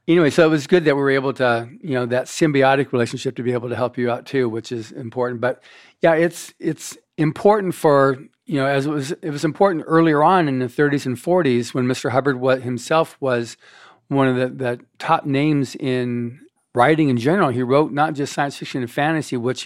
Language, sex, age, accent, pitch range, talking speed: English, male, 50-69, American, 125-145 Hz, 215 wpm